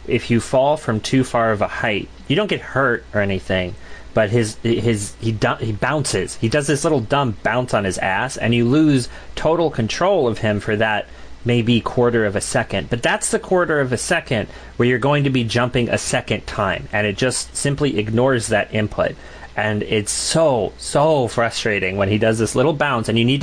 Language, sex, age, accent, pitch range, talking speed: English, male, 30-49, American, 100-130 Hz, 205 wpm